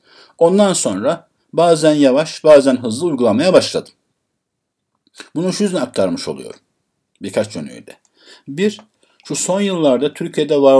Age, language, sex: 50-69, Turkish, male